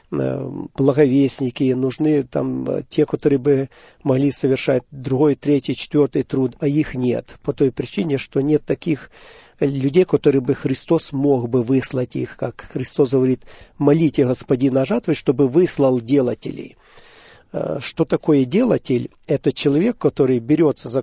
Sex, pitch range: male, 130-155 Hz